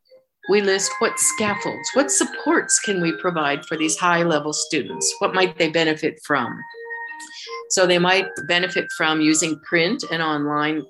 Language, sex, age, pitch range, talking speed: English, female, 50-69, 155-220 Hz, 150 wpm